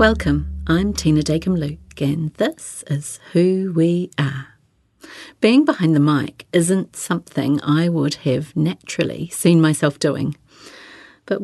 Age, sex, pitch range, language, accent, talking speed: 50-69, female, 145-180 Hz, English, British, 125 wpm